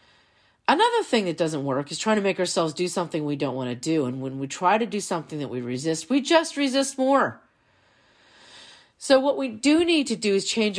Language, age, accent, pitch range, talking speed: English, 40-59, American, 140-210 Hz, 220 wpm